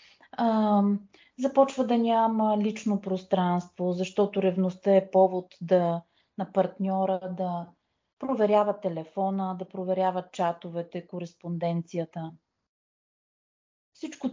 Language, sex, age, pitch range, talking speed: Bulgarian, female, 30-49, 180-225 Hz, 85 wpm